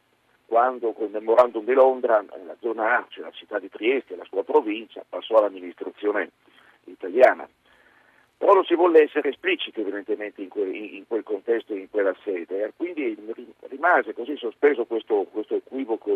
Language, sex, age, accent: Italian, male, 50-69, native